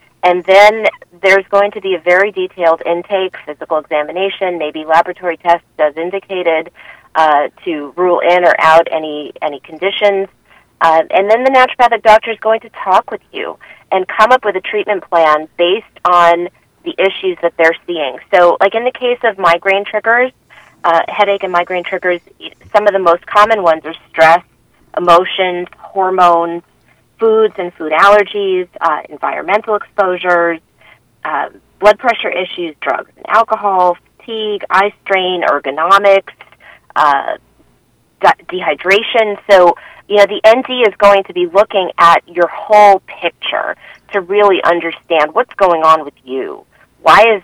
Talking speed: 150 wpm